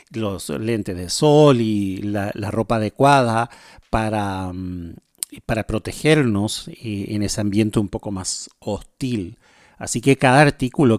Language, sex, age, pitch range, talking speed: Spanish, male, 40-59, 110-145 Hz, 125 wpm